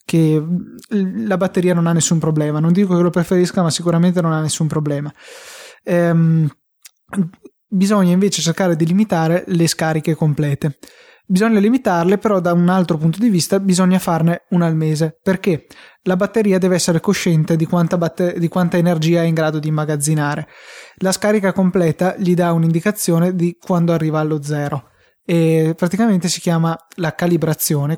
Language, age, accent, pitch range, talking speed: Italian, 20-39, native, 160-185 Hz, 155 wpm